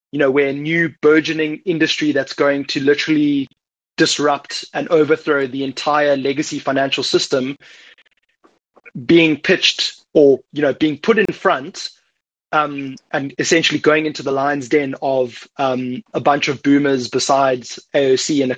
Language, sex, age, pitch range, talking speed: English, male, 20-39, 135-165 Hz, 150 wpm